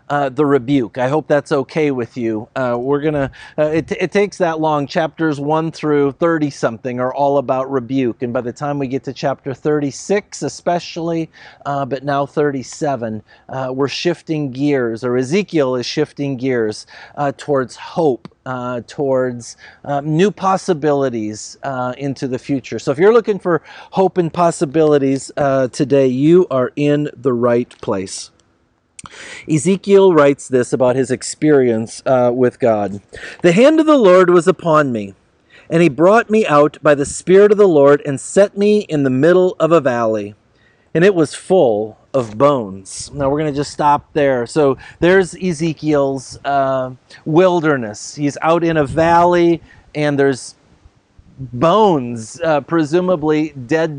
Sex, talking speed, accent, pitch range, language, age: male, 160 wpm, American, 125-160 Hz, English, 40-59